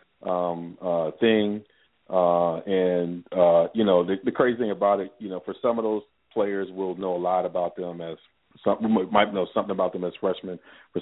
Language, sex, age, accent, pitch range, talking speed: English, male, 40-59, American, 85-95 Hz, 205 wpm